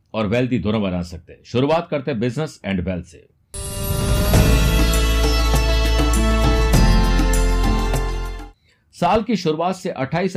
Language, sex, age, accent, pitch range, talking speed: Hindi, male, 50-69, native, 105-150 Hz, 105 wpm